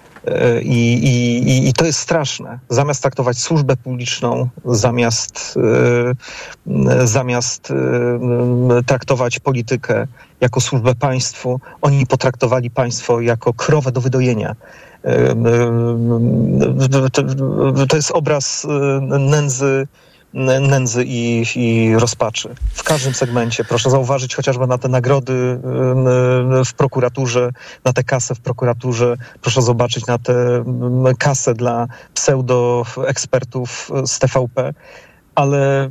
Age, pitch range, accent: 40-59, 120-135 Hz, native